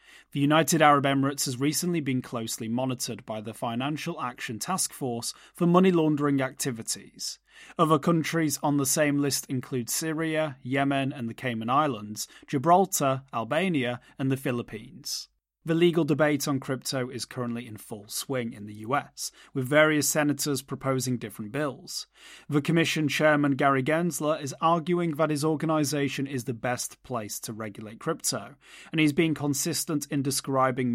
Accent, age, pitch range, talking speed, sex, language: British, 30-49, 125-155 Hz, 155 wpm, male, English